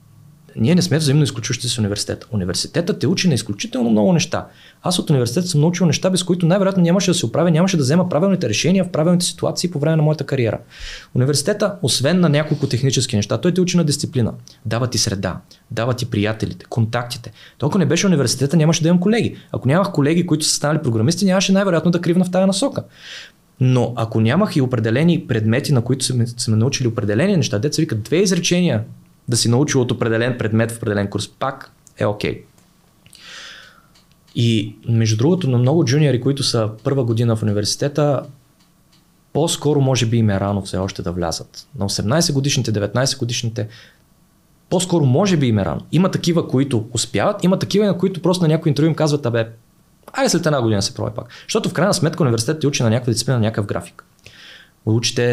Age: 20-39